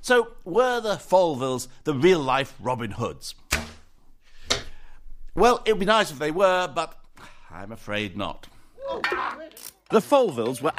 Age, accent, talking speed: 60-79, British, 130 wpm